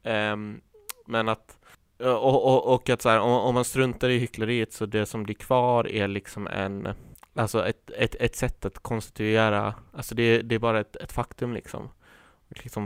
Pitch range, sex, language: 105-120 Hz, male, Swedish